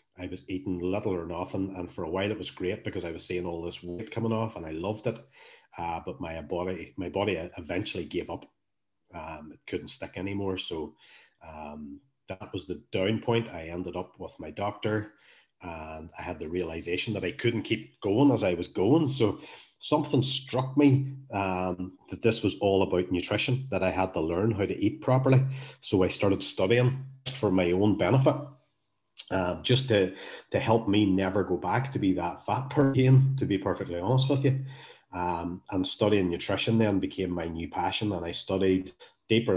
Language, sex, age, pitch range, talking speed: English, male, 30-49, 90-115 Hz, 195 wpm